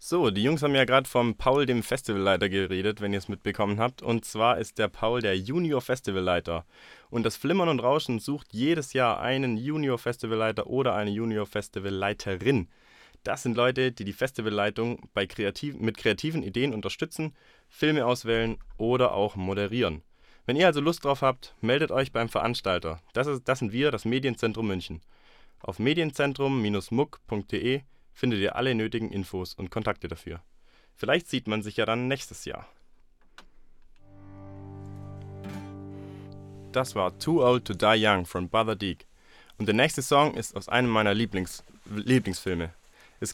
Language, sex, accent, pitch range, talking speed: German, male, German, 100-130 Hz, 150 wpm